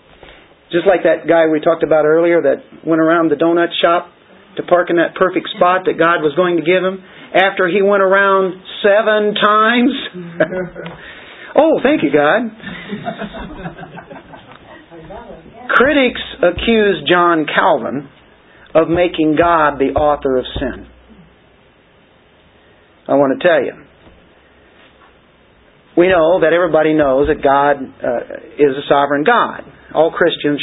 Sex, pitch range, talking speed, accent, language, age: male, 155-200 Hz, 130 wpm, American, English, 50-69